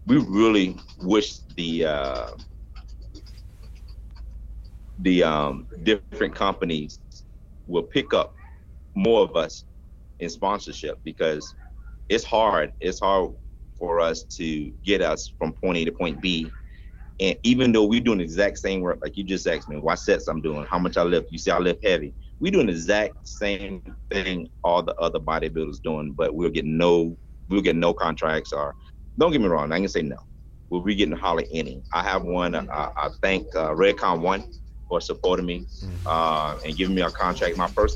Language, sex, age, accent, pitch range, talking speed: English, male, 30-49, American, 80-100 Hz, 175 wpm